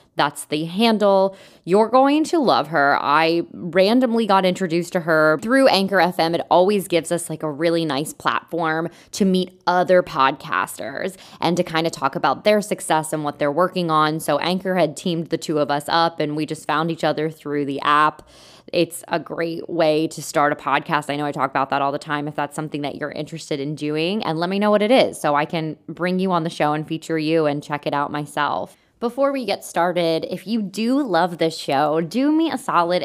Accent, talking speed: American, 225 wpm